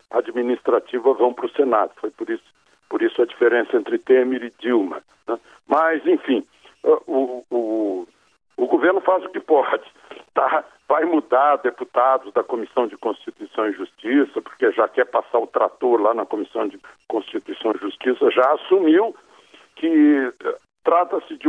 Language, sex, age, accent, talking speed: Portuguese, male, 60-79, Brazilian, 155 wpm